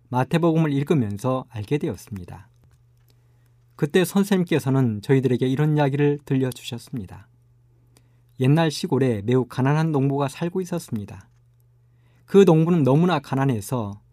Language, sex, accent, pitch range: Korean, male, native, 120-150 Hz